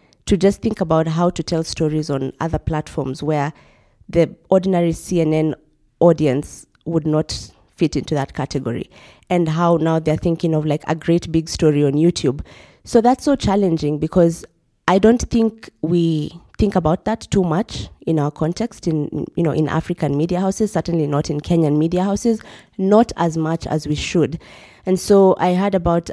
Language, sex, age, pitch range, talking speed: English, female, 20-39, 150-175 Hz, 175 wpm